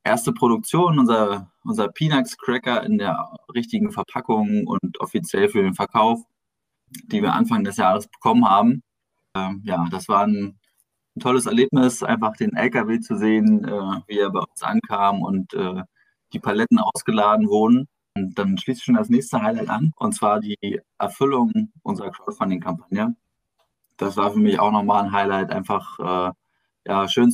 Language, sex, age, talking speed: German, male, 20-39, 160 wpm